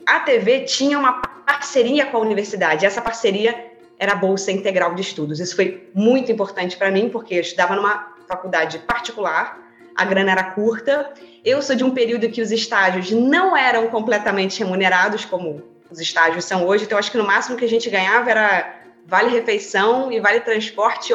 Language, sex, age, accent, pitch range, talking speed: Portuguese, female, 20-39, Brazilian, 180-235 Hz, 180 wpm